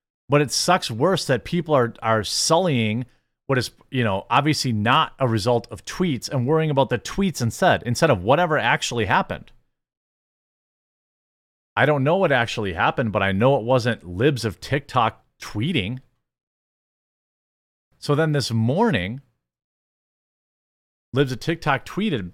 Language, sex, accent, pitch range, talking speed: English, male, American, 115-150 Hz, 140 wpm